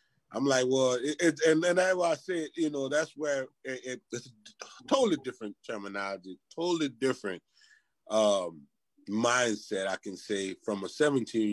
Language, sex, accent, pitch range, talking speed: English, male, American, 105-150 Hz, 160 wpm